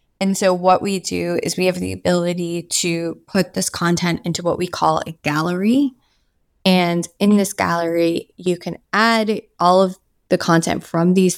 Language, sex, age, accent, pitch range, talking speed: English, female, 20-39, American, 165-195 Hz, 175 wpm